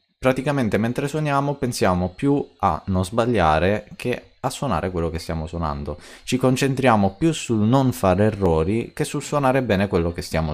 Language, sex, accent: Italian, male, native